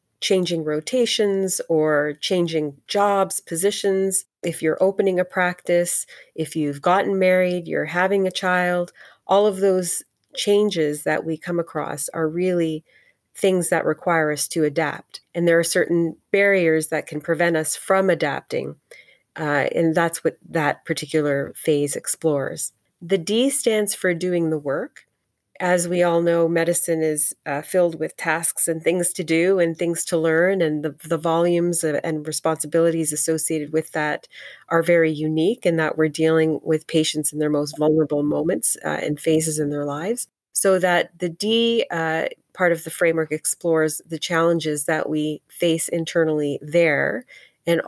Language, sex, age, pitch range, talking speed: English, female, 30-49, 155-175 Hz, 160 wpm